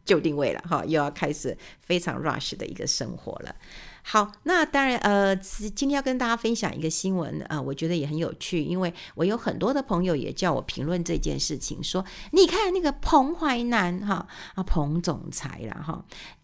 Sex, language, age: female, Chinese, 50-69